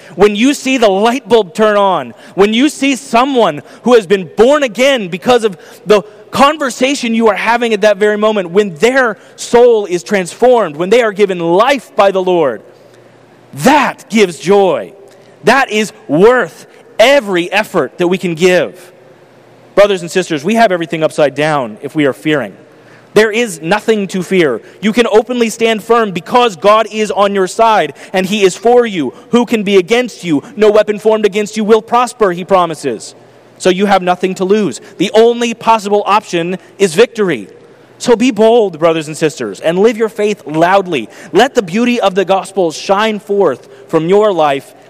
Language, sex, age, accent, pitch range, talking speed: English, male, 30-49, American, 175-225 Hz, 180 wpm